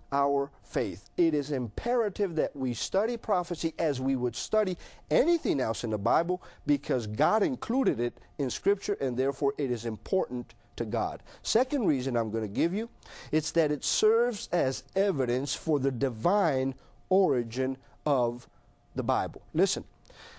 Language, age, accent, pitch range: English, 50-69, American, 130-200 Hz